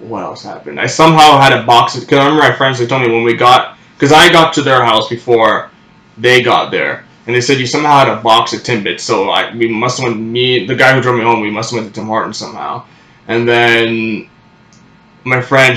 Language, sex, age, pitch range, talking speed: English, male, 20-39, 115-135 Hz, 245 wpm